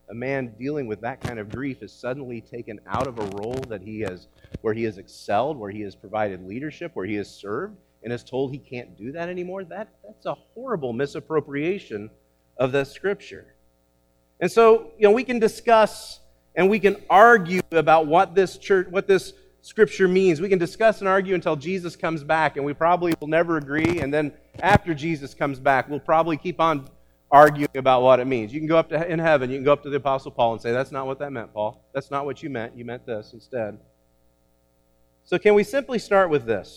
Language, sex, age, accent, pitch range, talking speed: English, male, 40-59, American, 115-180 Hz, 220 wpm